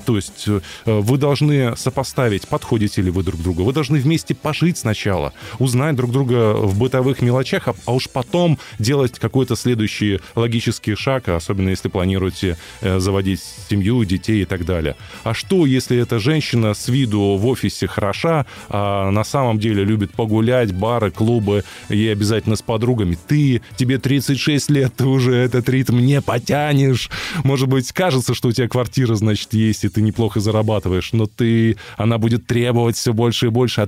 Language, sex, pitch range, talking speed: Russian, male, 105-130 Hz, 165 wpm